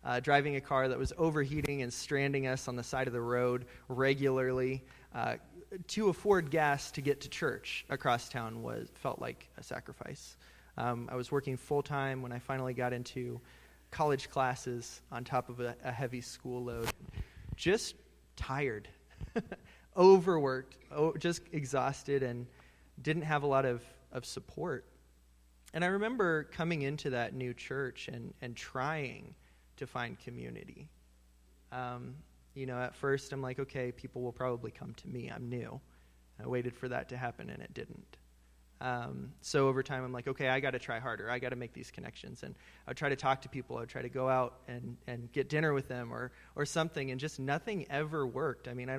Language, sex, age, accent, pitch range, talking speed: English, male, 20-39, American, 120-140 Hz, 185 wpm